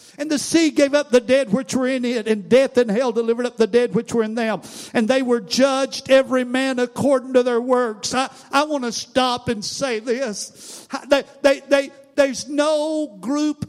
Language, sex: English, male